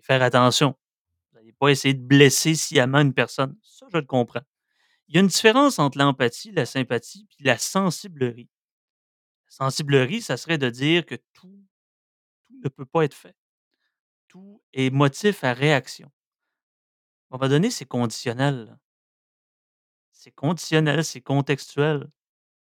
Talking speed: 145 wpm